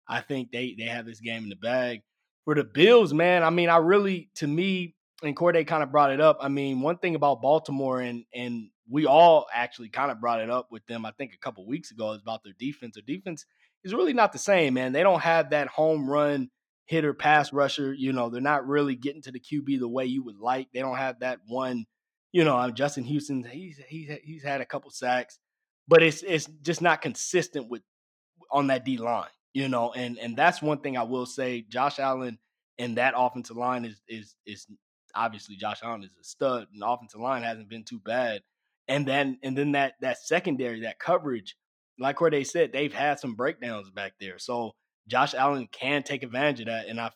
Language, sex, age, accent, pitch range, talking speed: English, male, 20-39, American, 120-145 Hz, 220 wpm